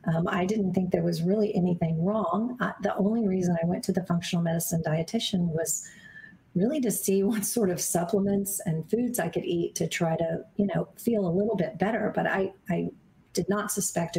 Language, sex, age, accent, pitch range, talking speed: English, female, 40-59, American, 175-205 Hz, 205 wpm